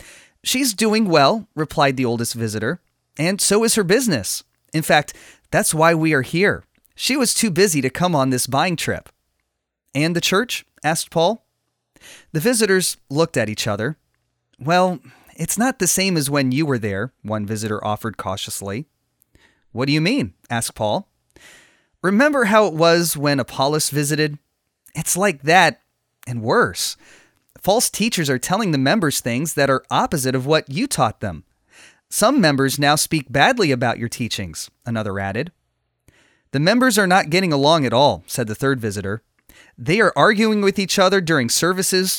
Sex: male